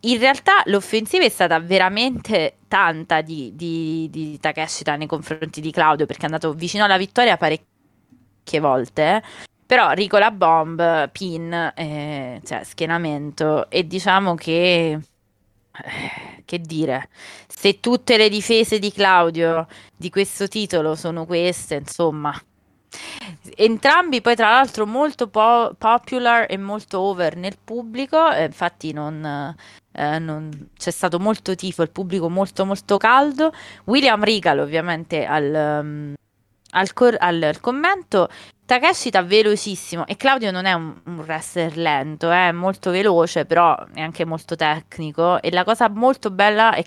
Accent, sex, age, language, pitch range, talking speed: native, female, 20-39, Italian, 160-230 Hz, 135 wpm